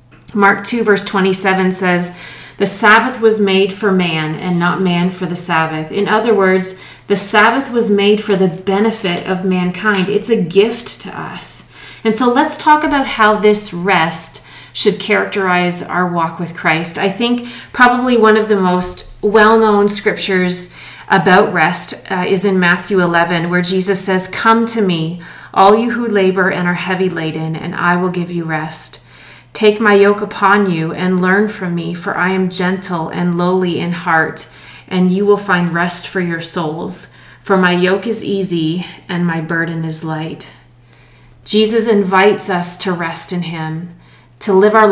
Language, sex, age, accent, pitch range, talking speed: English, female, 40-59, American, 175-210 Hz, 170 wpm